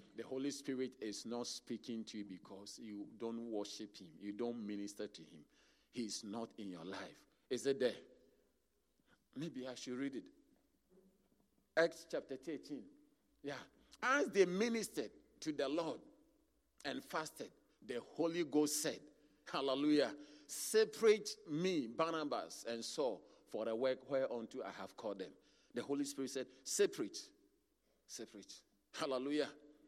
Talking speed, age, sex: 140 wpm, 50-69, male